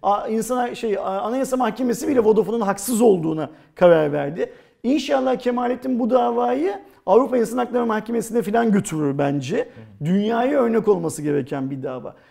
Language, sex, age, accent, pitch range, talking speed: Turkish, male, 40-59, native, 190-250 Hz, 135 wpm